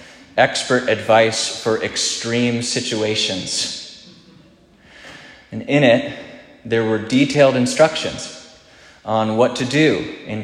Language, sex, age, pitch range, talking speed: English, male, 20-39, 110-140 Hz, 100 wpm